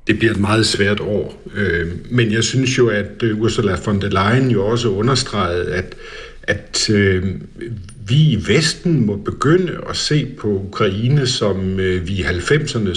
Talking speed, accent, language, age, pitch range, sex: 155 wpm, native, Danish, 60-79, 95-125 Hz, male